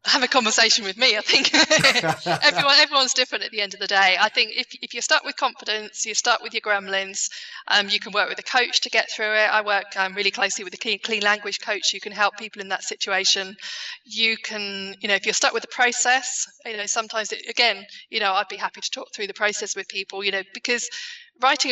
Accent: British